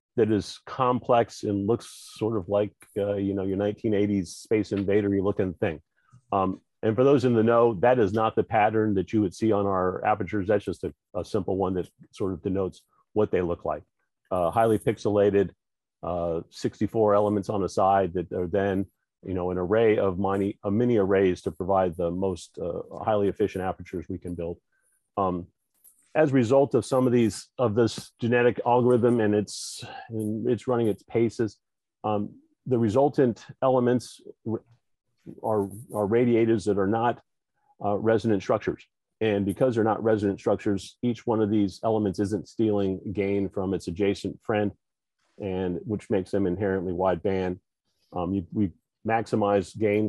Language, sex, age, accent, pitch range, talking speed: Turkish, male, 40-59, American, 95-115 Hz, 175 wpm